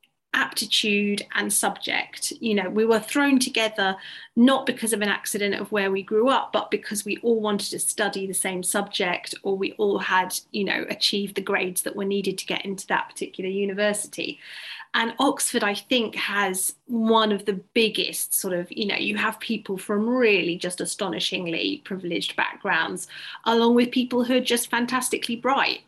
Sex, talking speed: female, 180 wpm